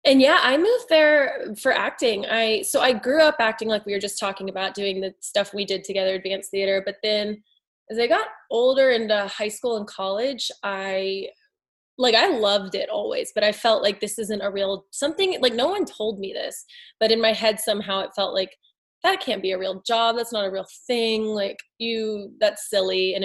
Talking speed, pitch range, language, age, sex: 215 wpm, 195-225 Hz, English, 20-39, female